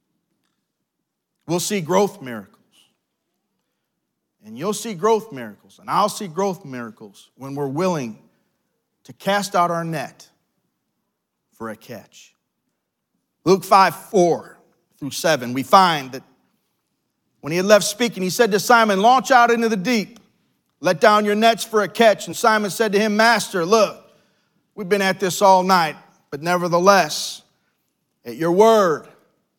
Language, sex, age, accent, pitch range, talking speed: English, male, 40-59, American, 160-205 Hz, 145 wpm